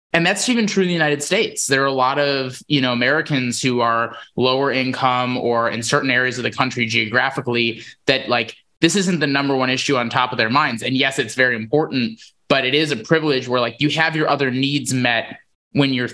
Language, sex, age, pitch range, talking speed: English, male, 20-39, 120-150 Hz, 225 wpm